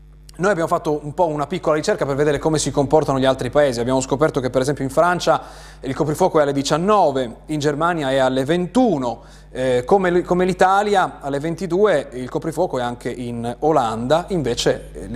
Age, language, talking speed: 30-49, Italian, 185 wpm